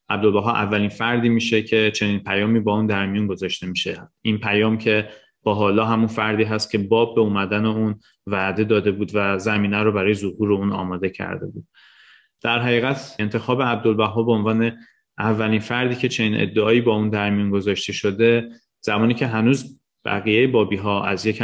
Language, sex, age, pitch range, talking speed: Persian, male, 30-49, 105-115 Hz, 170 wpm